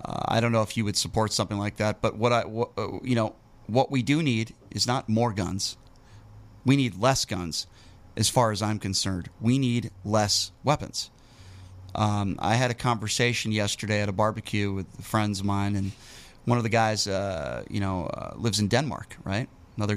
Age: 30-49